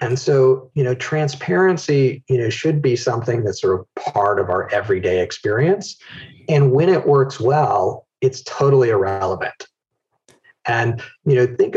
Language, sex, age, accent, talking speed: English, male, 40-59, American, 155 wpm